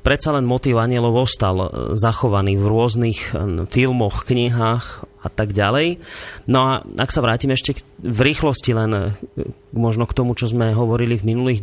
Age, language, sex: 30-49, Slovak, male